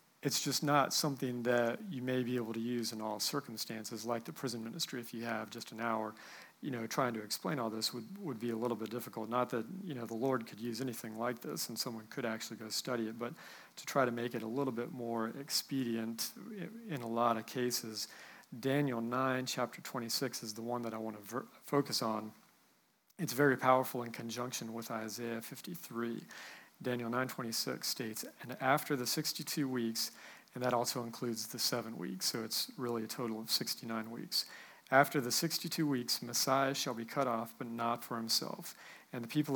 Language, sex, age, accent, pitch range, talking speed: English, male, 40-59, American, 115-135 Hz, 200 wpm